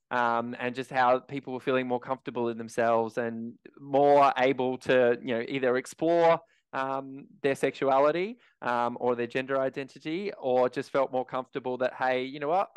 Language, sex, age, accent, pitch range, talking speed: English, male, 20-39, Australian, 120-140 Hz, 175 wpm